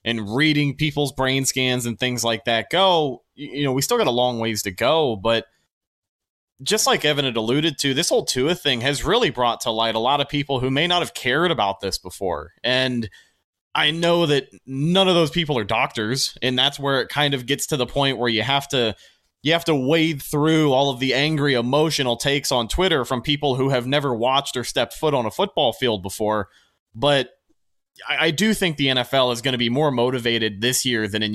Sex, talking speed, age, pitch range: male, 220 wpm, 20-39, 115-150 Hz